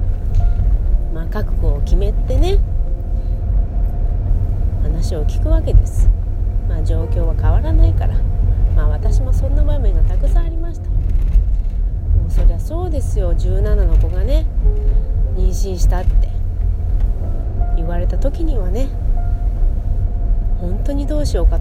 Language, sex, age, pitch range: Japanese, female, 30-49, 80-90 Hz